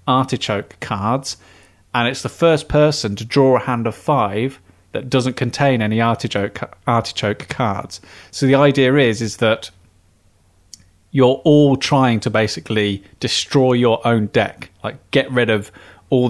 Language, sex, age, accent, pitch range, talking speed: English, male, 30-49, British, 100-130 Hz, 145 wpm